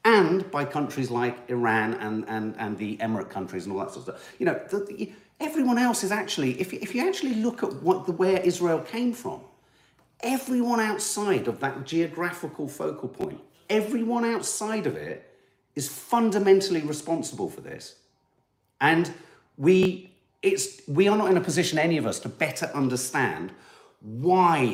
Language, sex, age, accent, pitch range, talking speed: English, male, 40-59, British, 115-180 Hz, 170 wpm